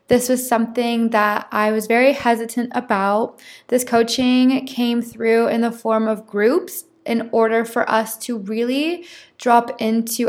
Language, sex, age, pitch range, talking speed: English, female, 20-39, 220-270 Hz, 150 wpm